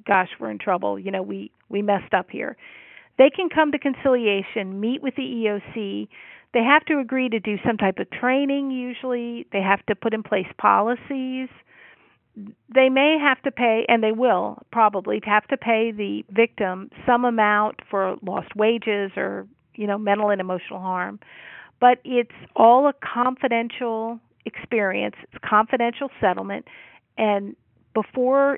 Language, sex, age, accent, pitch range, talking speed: English, female, 50-69, American, 200-250 Hz, 160 wpm